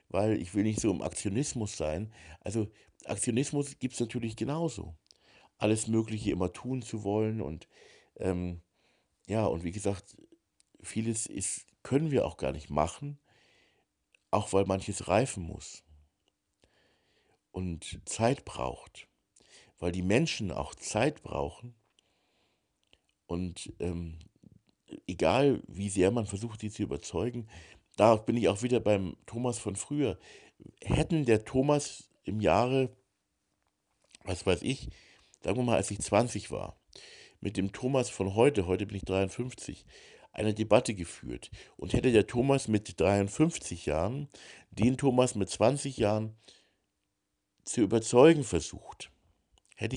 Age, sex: 60-79, male